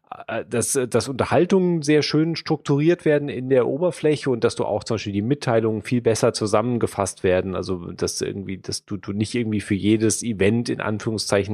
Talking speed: 185 wpm